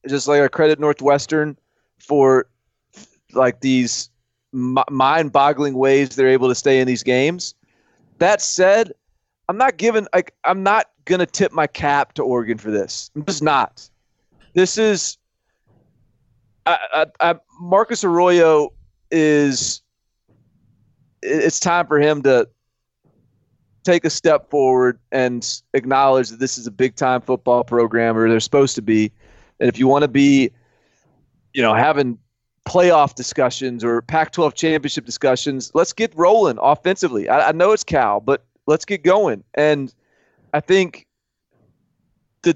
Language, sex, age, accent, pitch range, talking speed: English, male, 30-49, American, 125-160 Hz, 145 wpm